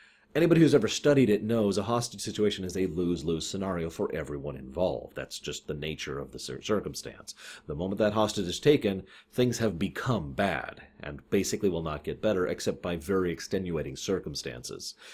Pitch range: 90-120 Hz